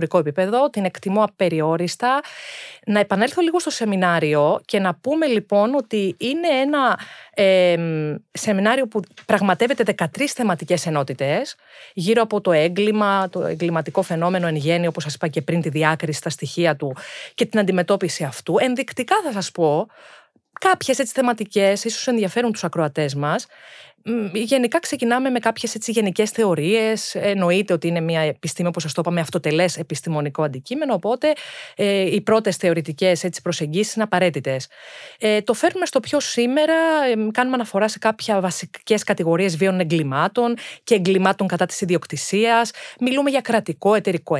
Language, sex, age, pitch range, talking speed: Greek, female, 30-49, 170-225 Hz, 140 wpm